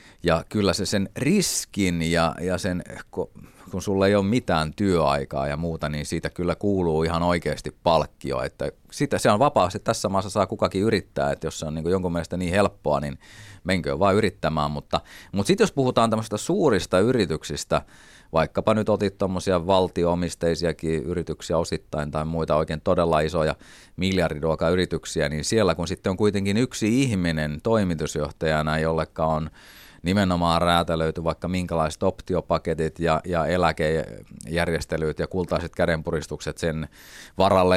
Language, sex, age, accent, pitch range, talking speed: Finnish, male, 30-49, native, 80-100 Hz, 145 wpm